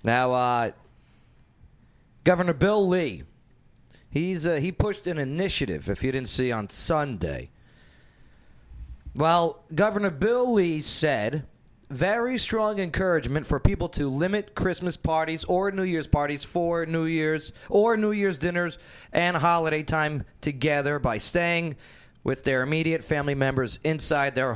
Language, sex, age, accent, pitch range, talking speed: English, male, 40-59, American, 120-170 Hz, 135 wpm